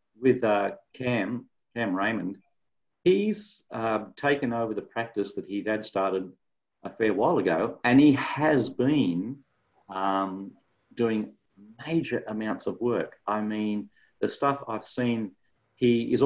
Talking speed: 135 wpm